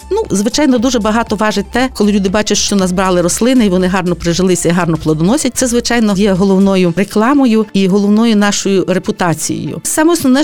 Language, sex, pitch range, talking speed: Ukrainian, female, 195-260 Hz, 170 wpm